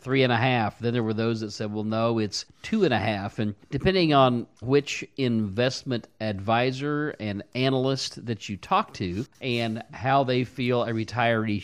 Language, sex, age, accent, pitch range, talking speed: English, male, 50-69, American, 105-130 Hz, 180 wpm